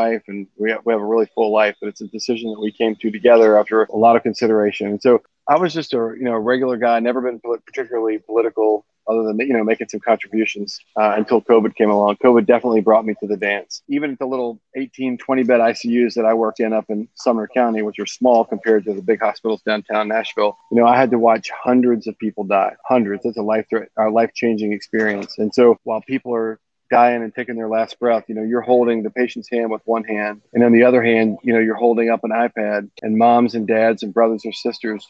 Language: English